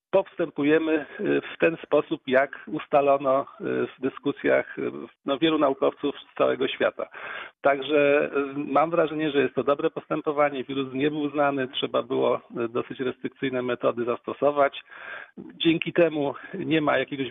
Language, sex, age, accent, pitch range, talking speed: Polish, male, 50-69, native, 130-150 Hz, 125 wpm